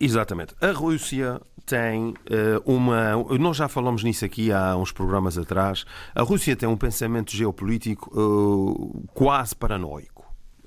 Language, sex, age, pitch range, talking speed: Portuguese, male, 40-59, 105-145 Hz, 125 wpm